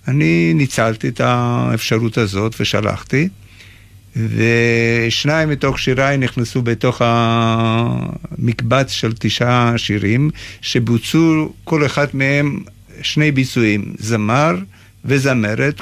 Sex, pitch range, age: male, 105-125 Hz, 50-69